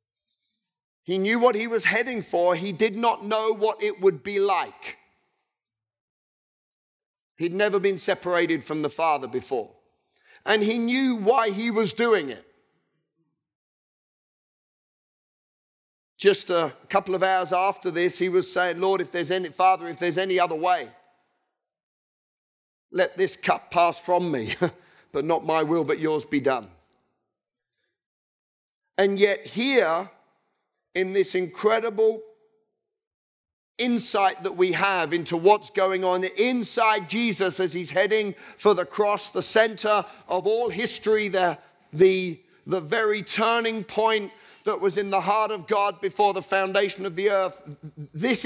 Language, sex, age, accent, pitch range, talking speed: English, male, 40-59, British, 180-220 Hz, 140 wpm